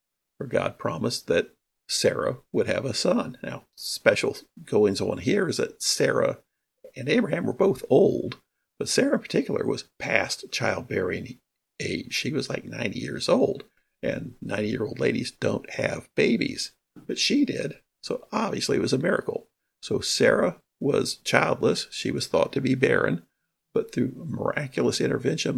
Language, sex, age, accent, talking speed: English, male, 50-69, American, 150 wpm